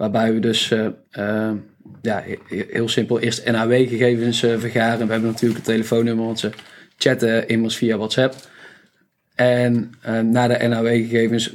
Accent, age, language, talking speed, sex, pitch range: Dutch, 20-39, Dutch, 145 wpm, male, 110-120 Hz